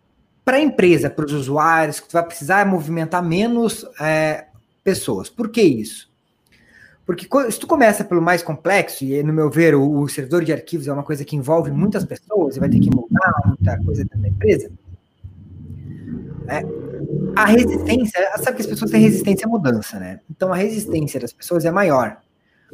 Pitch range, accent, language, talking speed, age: 155-210 Hz, Brazilian, Portuguese, 175 wpm, 20-39